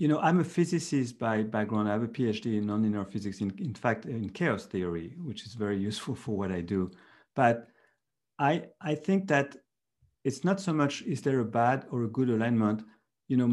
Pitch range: 110-140 Hz